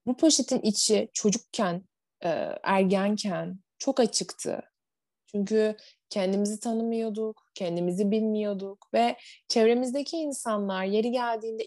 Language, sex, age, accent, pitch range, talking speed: Turkish, female, 20-39, native, 185-235 Hz, 85 wpm